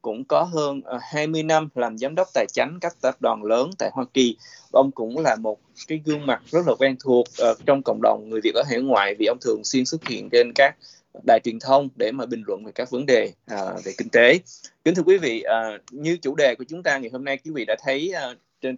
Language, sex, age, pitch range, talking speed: Vietnamese, male, 20-39, 130-165 Hz, 255 wpm